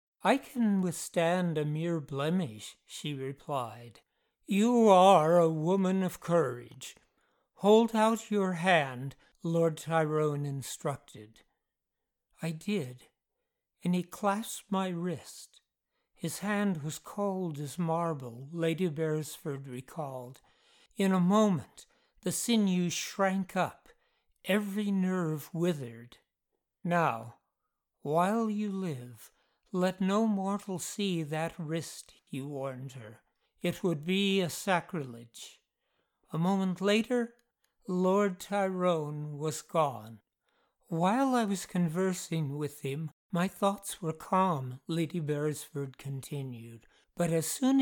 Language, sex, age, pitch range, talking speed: English, male, 60-79, 150-195 Hz, 110 wpm